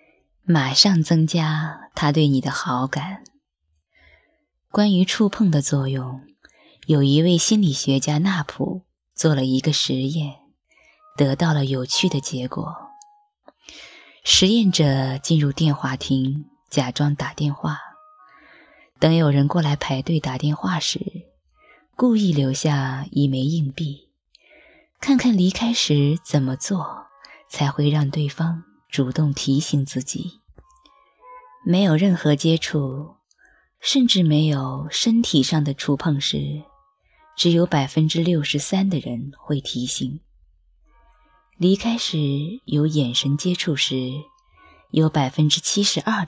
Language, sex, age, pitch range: Chinese, female, 20-39, 140-185 Hz